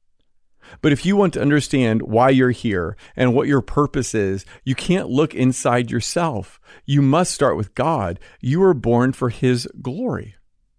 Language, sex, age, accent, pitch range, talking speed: English, male, 40-59, American, 120-165 Hz, 165 wpm